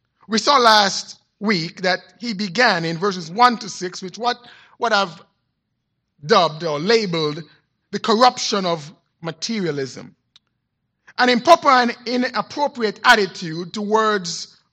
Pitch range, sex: 155-225 Hz, male